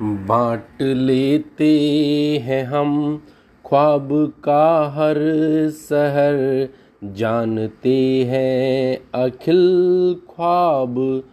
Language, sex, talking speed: Hindi, male, 65 wpm